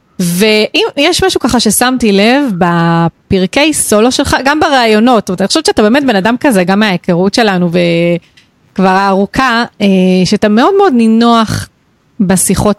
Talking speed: 135 wpm